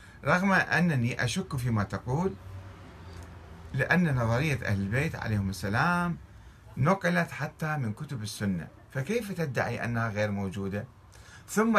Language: Arabic